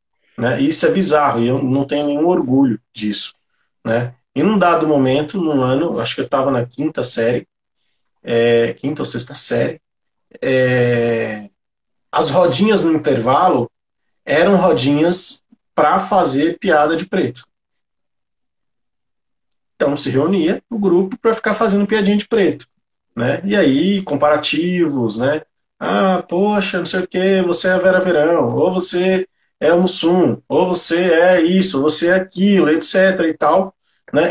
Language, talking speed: Portuguese, 150 wpm